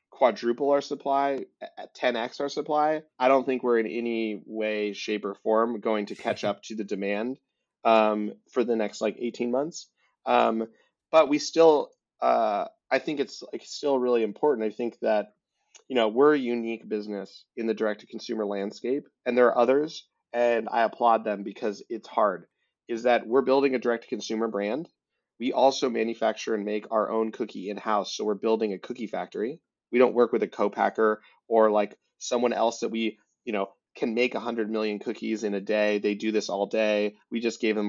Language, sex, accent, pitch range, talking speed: English, male, American, 105-130 Hz, 190 wpm